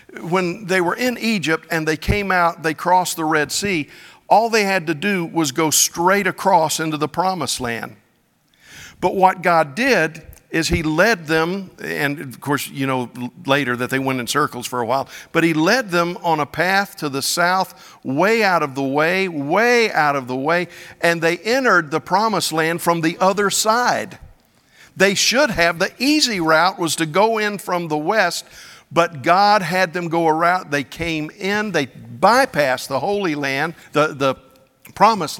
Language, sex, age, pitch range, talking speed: English, male, 50-69, 145-185 Hz, 185 wpm